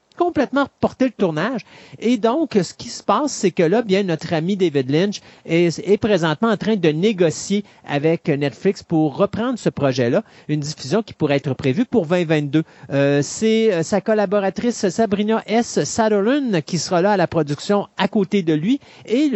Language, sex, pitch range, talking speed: French, male, 155-220 Hz, 175 wpm